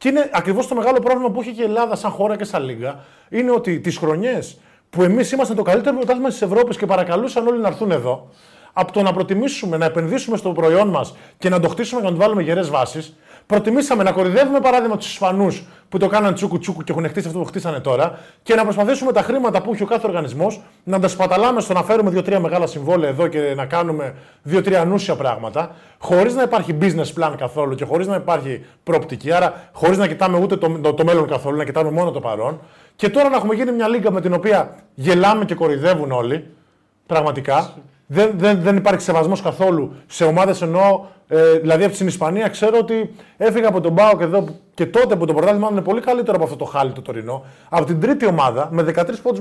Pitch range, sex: 165-220 Hz, male